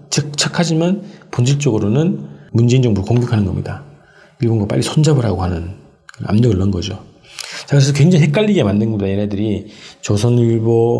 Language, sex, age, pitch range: Korean, male, 40-59, 110-145 Hz